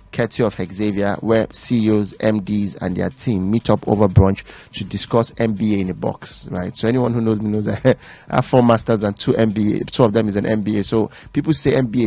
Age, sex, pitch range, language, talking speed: 30-49, male, 100-120 Hz, English, 215 wpm